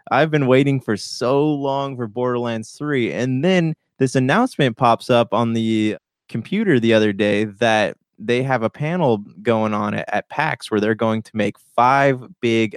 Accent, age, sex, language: American, 20-39, male, English